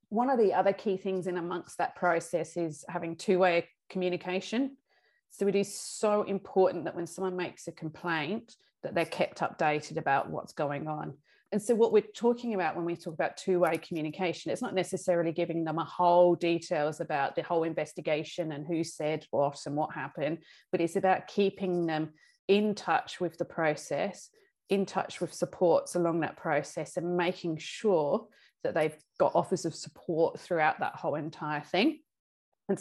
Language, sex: English, female